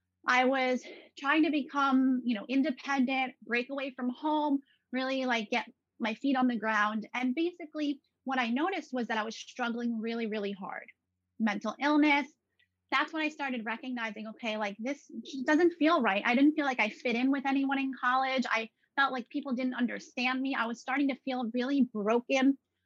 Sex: female